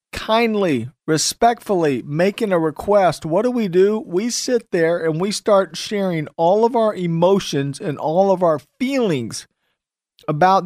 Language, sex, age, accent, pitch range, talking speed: English, male, 50-69, American, 150-195 Hz, 145 wpm